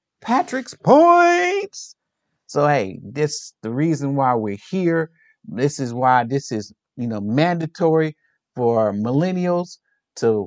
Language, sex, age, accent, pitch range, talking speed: English, male, 50-69, American, 140-185 Hz, 120 wpm